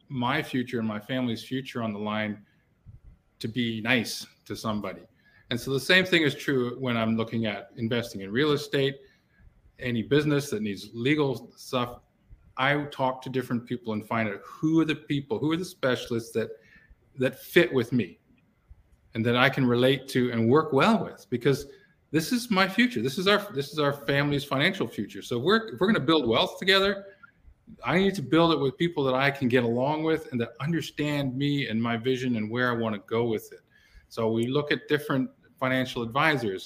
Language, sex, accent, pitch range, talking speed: English, male, American, 120-160 Hz, 205 wpm